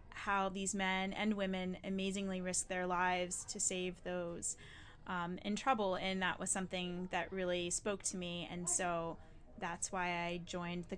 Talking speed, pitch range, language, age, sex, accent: 170 wpm, 185-220 Hz, English, 20-39, female, American